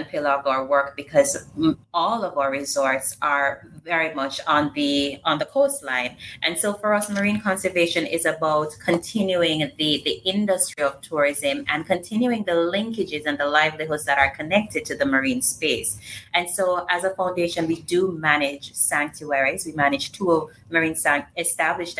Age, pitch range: 30-49, 140-175 Hz